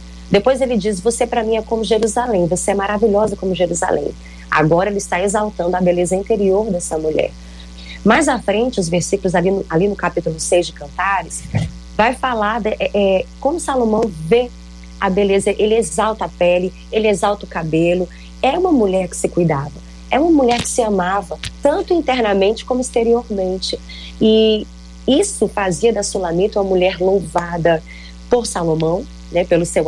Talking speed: 165 wpm